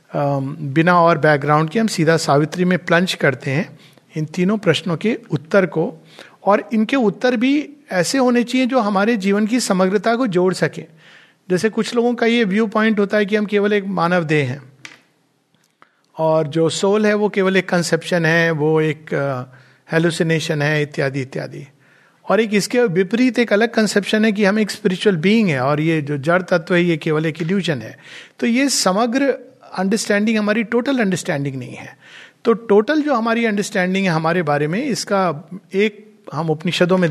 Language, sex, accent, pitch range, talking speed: Hindi, male, native, 150-205 Hz, 180 wpm